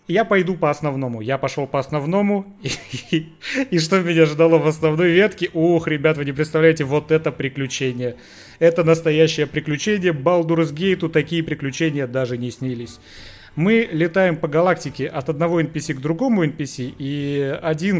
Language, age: Russian, 30-49